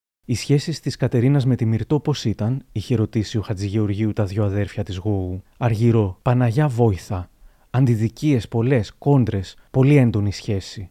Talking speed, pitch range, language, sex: 150 wpm, 110-130 Hz, Greek, male